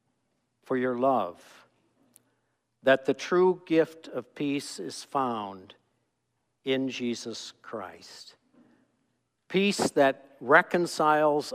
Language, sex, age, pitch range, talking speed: English, male, 60-79, 115-160 Hz, 90 wpm